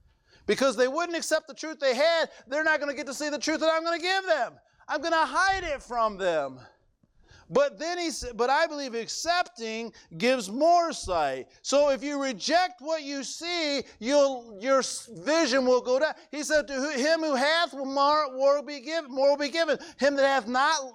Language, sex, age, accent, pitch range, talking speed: English, male, 50-69, American, 180-300 Hz, 210 wpm